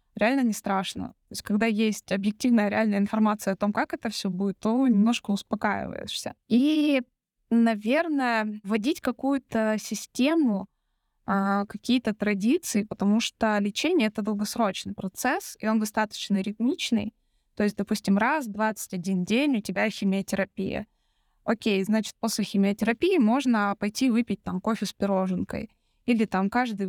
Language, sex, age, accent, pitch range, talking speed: Russian, female, 20-39, native, 200-235 Hz, 135 wpm